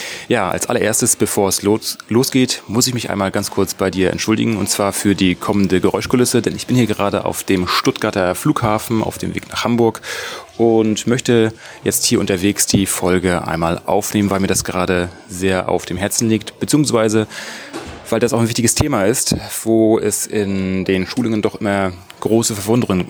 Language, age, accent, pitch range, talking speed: German, 30-49, German, 95-115 Hz, 180 wpm